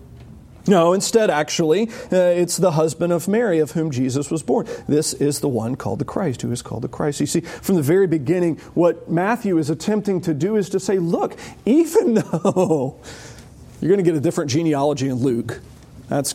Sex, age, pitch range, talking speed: male, 40-59, 140-185 Hz, 200 wpm